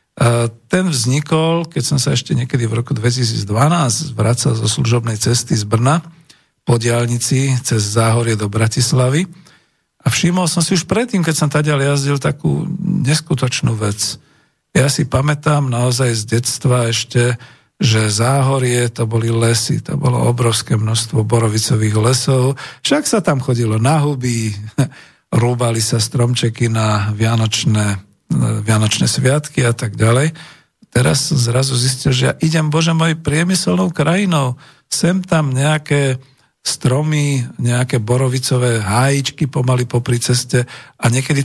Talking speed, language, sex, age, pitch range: 135 wpm, Slovak, male, 50-69, 120-150 Hz